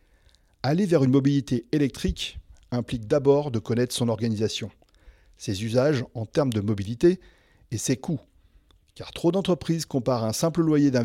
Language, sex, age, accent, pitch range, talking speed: French, male, 40-59, French, 110-145 Hz, 150 wpm